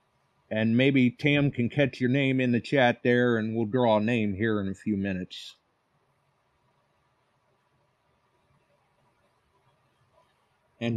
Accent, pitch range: American, 110-135 Hz